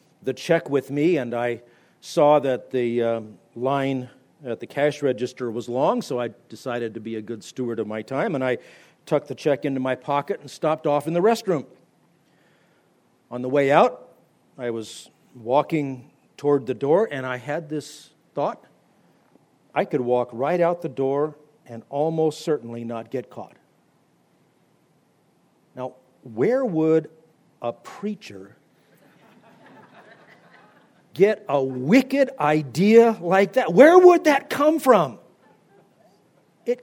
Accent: American